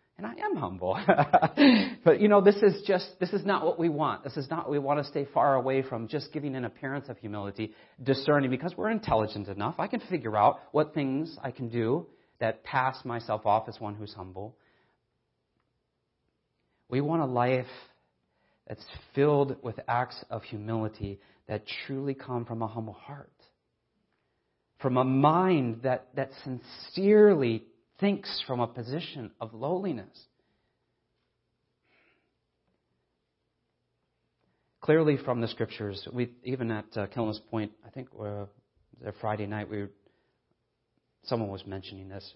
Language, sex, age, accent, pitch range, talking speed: English, male, 40-59, American, 105-140 Hz, 145 wpm